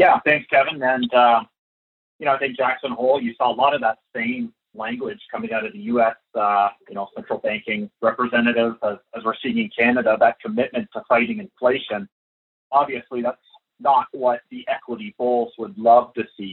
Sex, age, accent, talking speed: male, 30-49, American, 190 wpm